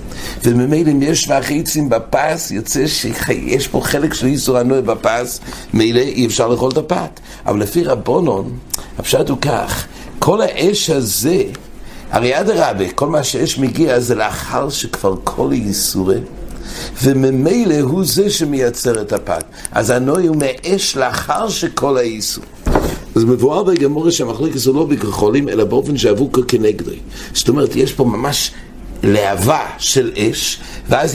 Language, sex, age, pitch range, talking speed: English, male, 60-79, 115-155 Hz, 135 wpm